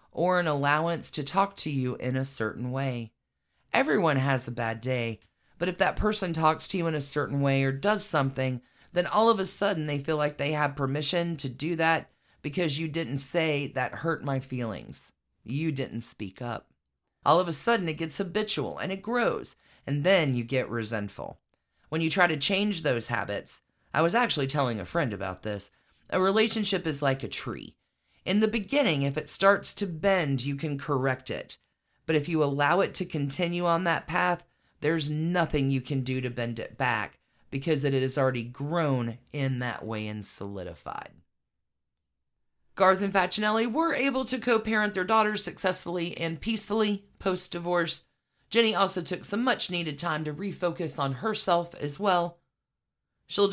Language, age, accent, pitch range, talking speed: English, 40-59, American, 130-180 Hz, 180 wpm